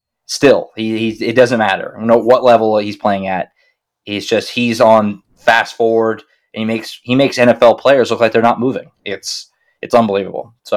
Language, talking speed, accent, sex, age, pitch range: English, 200 wpm, American, male, 20-39, 110-135 Hz